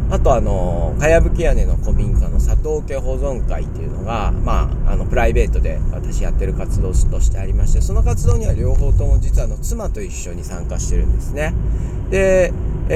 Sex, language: male, Japanese